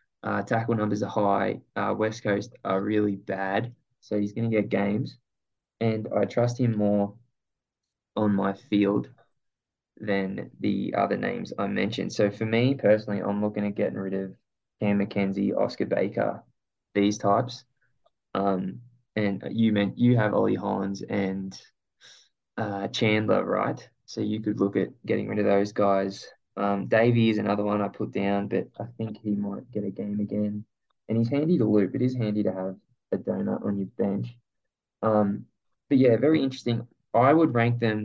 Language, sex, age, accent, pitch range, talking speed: English, male, 20-39, Australian, 100-115 Hz, 175 wpm